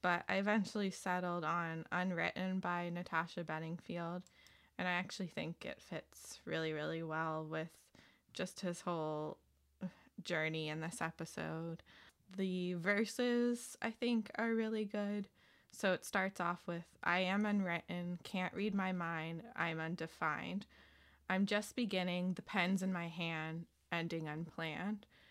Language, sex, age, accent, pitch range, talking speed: English, female, 20-39, American, 160-195 Hz, 135 wpm